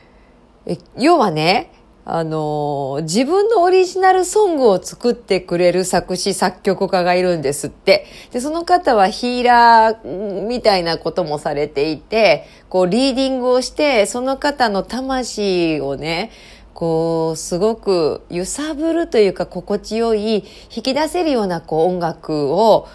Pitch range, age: 160-230 Hz, 40-59